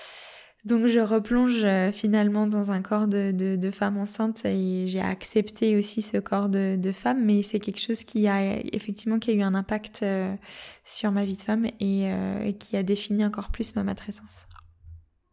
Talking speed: 190 wpm